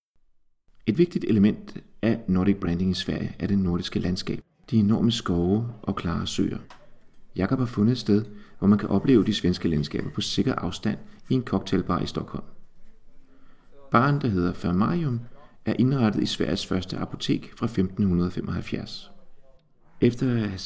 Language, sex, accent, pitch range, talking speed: Danish, male, native, 90-115 Hz, 155 wpm